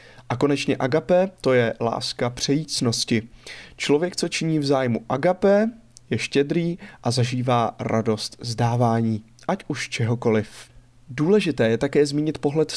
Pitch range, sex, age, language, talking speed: 120-155 Hz, male, 20-39, Czech, 125 wpm